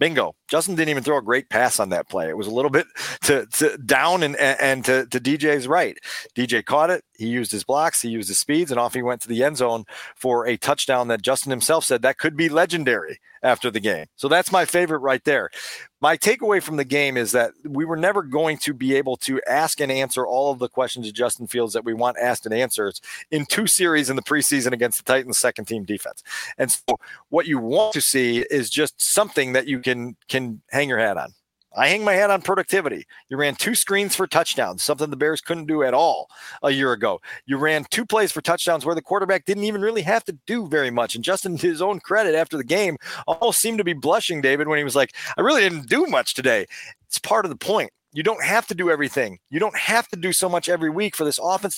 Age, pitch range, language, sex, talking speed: 40-59, 130-180 Hz, English, male, 245 wpm